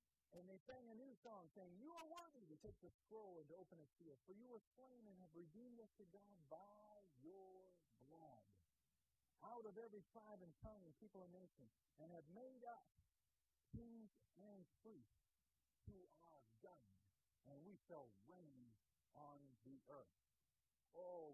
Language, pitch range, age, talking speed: English, 160-240 Hz, 50-69, 170 wpm